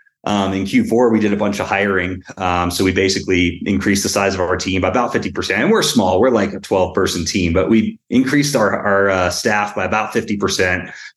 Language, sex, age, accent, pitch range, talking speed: English, male, 30-49, American, 100-120 Hz, 220 wpm